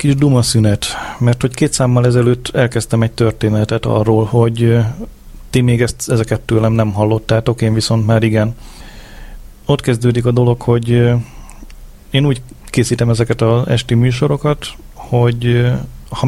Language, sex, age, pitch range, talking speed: Hungarian, male, 30-49, 115-130 Hz, 135 wpm